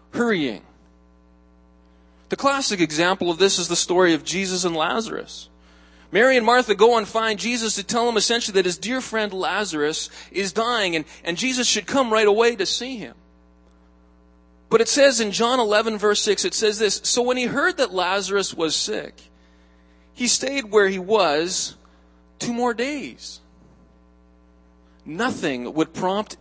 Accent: American